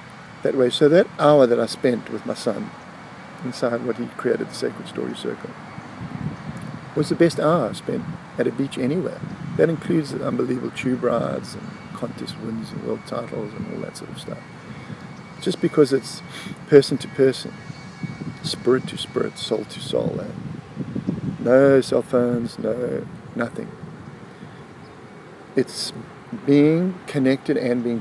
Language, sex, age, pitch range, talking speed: English, male, 50-69, 125-175 Hz, 150 wpm